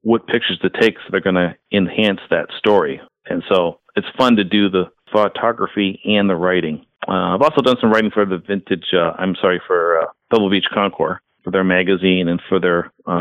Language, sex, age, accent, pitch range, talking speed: English, male, 40-59, American, 90-105 Hz, 210 wpm